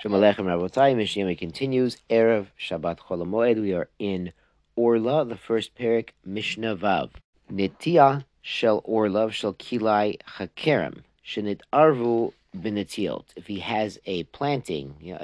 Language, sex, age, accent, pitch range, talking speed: English, male, 40-59, American, 95-125 Hz, 120 wpm